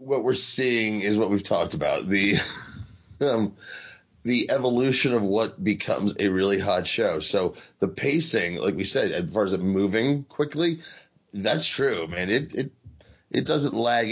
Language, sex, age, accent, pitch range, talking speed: English, male, 30-49, American, 100-130 Hz, 165 wpm